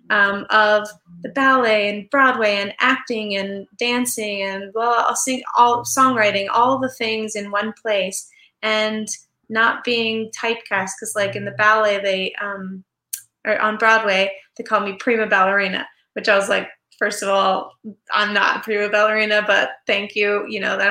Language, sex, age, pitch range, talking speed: English, female, 20-39, 200-240 Hz, 170 wpm